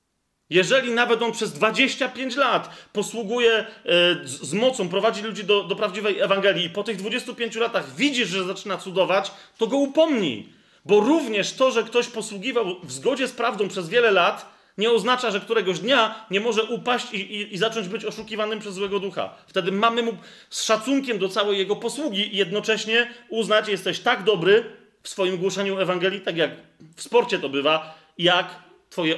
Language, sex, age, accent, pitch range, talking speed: Polish, male, 30-49, native, 170-220 Hz, 175 wpm